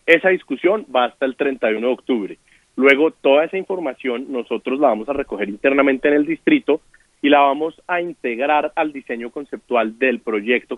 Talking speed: 175 wpm